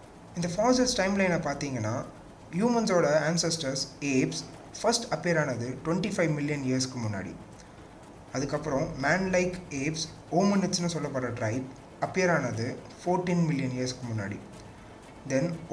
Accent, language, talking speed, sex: native, Tamil, 105 wpm, male